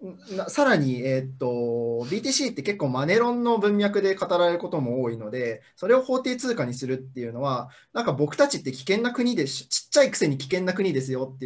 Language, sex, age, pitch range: Japanese, male, 20-39, 130-215 Hz